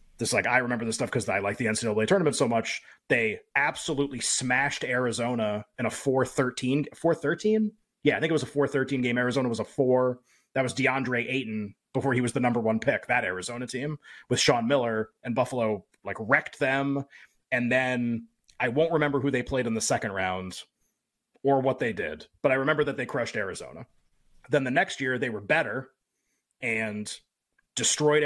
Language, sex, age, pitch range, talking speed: English, male, 30-49, 125-150 Hz, 195 wpm